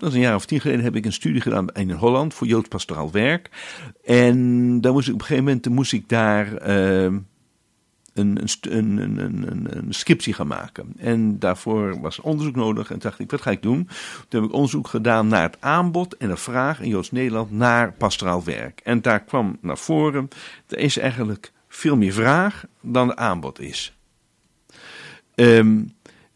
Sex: male